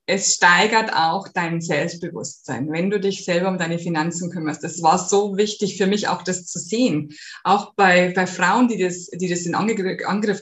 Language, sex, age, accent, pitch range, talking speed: German, female, 20-39, German, 180-235 Hz, 190 wpm